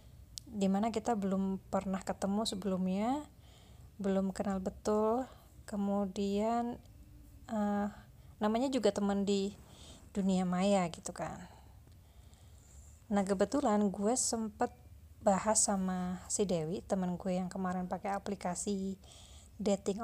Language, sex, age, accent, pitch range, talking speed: Indonesian, female, 20-39, native, 185-215 Hz, 100 wpm